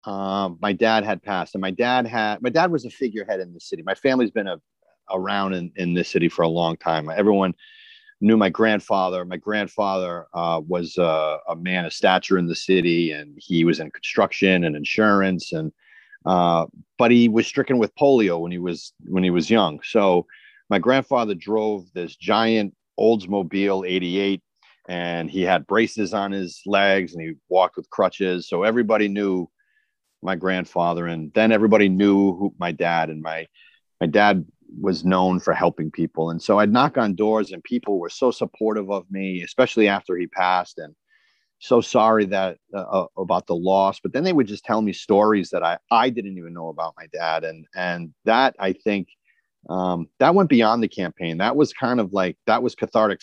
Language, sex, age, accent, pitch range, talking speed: English, male, 40-59, American, 85-110 Hz, 195 wpm